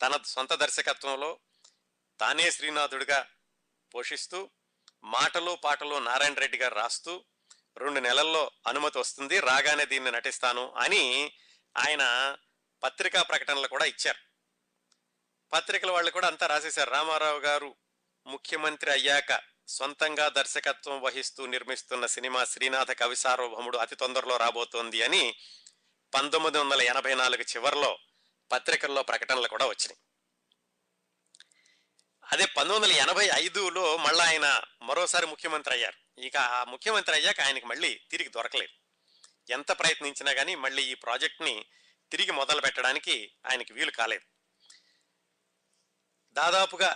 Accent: native